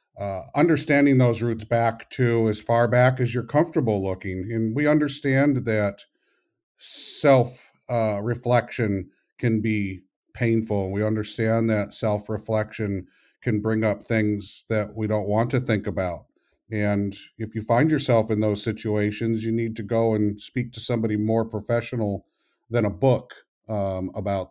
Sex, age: male, 50-69